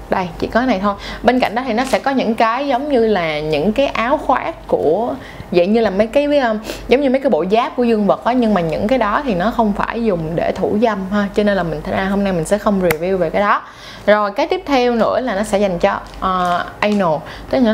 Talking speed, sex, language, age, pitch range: 265 wpm, female, Vietnamese, 20-39, 185-230 Hz